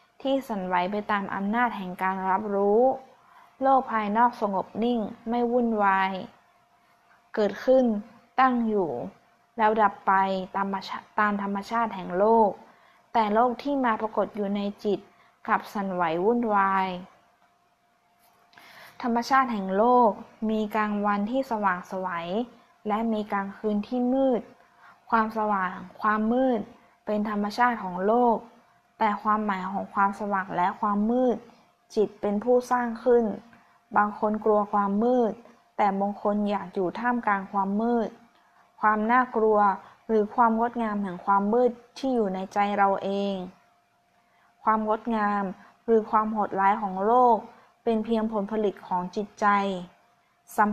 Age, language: 20-39, Thai